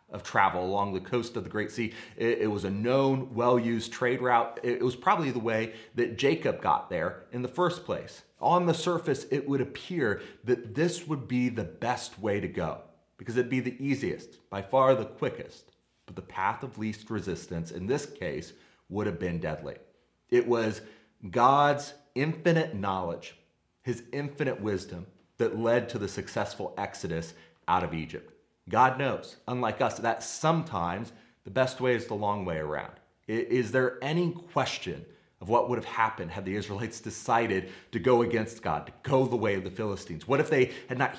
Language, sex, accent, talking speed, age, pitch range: English, male, American, 185 wpm, 30-49, 100-130 Hz